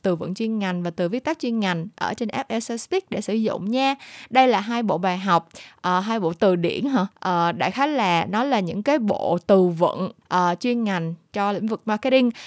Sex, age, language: female, 20-39, Vietnamese